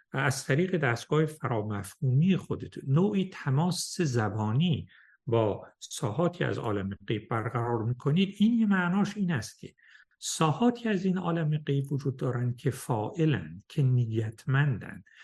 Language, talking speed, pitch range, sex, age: Persian, 125 wpm, 125-170 Hz, male, 60-79